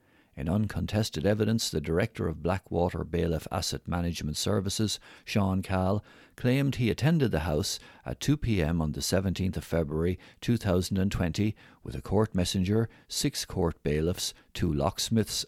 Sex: male